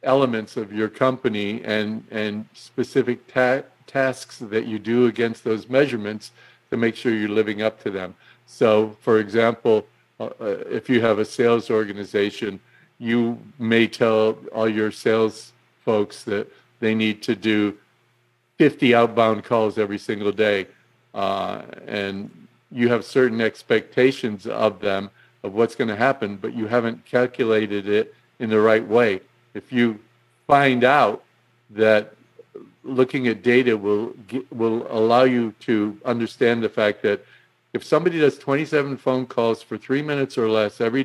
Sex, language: male, English